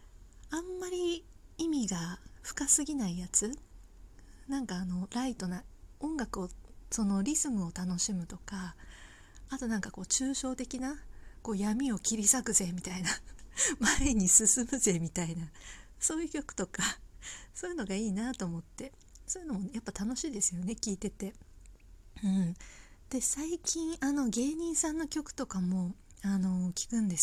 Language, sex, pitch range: Japanese, female, 185-265 Hz